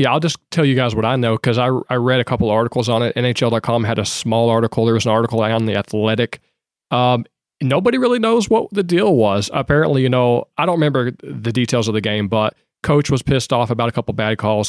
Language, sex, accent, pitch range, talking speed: English, male, American, 110-135 Hz, 240 wpm